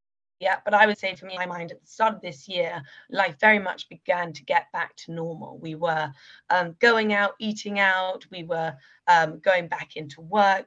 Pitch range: 175-220 Hz